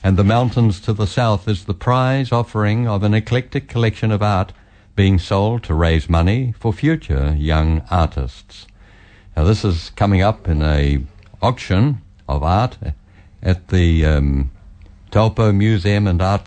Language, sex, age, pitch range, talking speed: English, male, 60-79, 80-105 Hz, 155 wpm